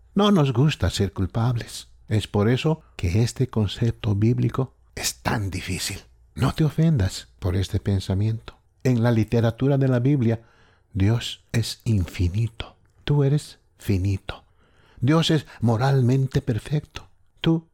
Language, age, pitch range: English, 60-79, 95-130 Hz